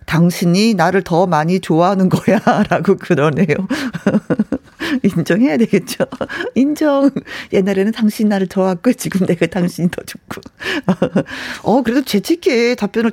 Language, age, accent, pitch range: Korean, 40-59, native, 175-260 Hz